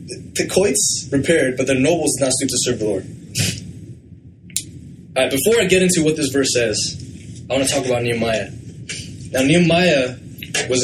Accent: American